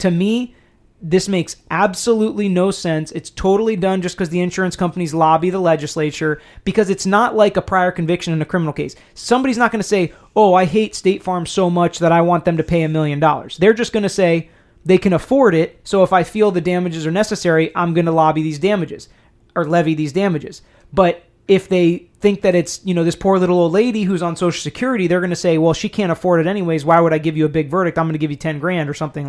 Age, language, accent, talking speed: 30-49, English, American, 250 wpm